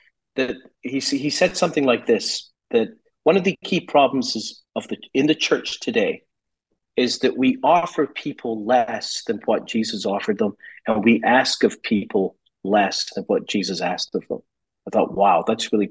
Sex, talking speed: male, 180 wpm